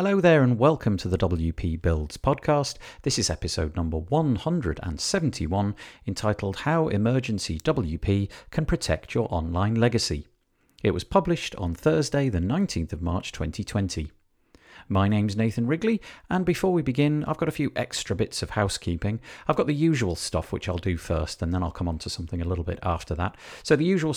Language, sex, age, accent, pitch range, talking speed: English, male, 40-59, British, 90-135 Hz, 180 wpm